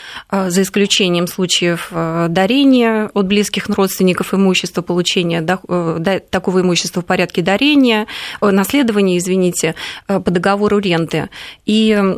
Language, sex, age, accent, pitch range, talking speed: Russian, female, 20-39, native, 180-215 Hz, 100 wpm